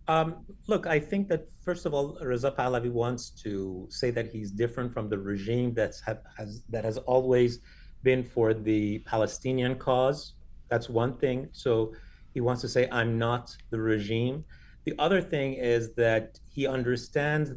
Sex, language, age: male, English, 30-49